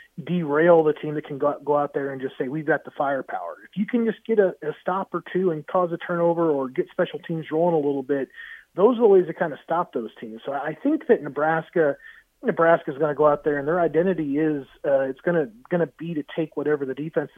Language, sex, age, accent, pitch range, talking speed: English, male, 30-49, American, 140-175 Hz, 260 wpm